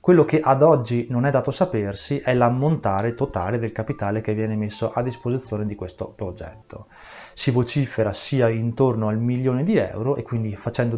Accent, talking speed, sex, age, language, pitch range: native, 175 wpm, male, 20-39, Italian, 105-125 Hz